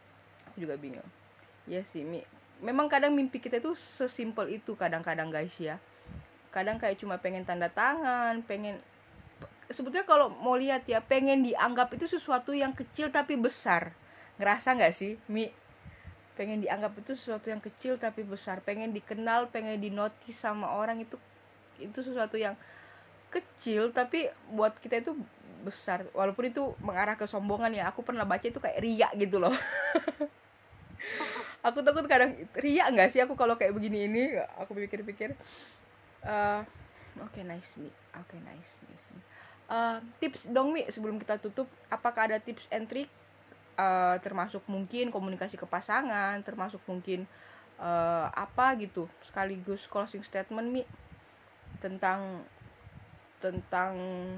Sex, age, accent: female, 20-39, native